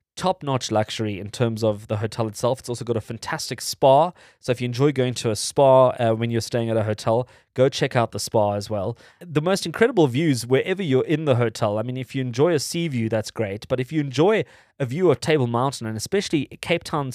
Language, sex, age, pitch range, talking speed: English, male, 20-39, 115-145 Hz, 240 wpm